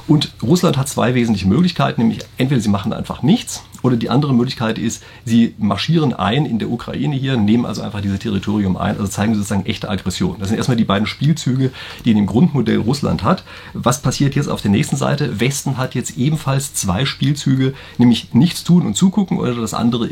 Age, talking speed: 40-59, 205 wpm